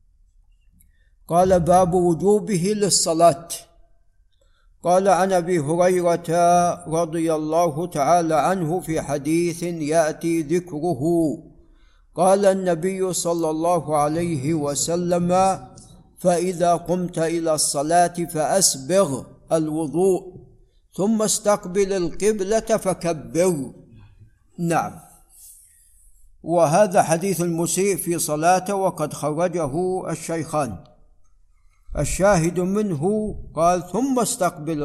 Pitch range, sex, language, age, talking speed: 155-185 Hz, male, Arabic, 60-79, 80 wpm